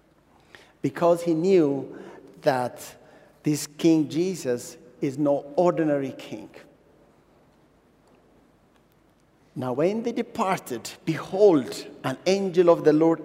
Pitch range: 155-205 Hz